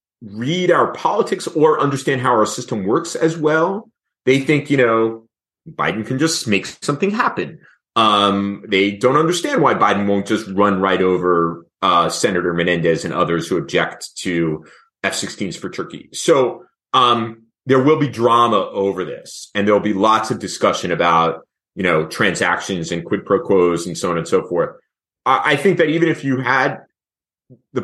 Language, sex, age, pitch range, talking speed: English, male, 30-49, 105-140 Hz, 175 wpm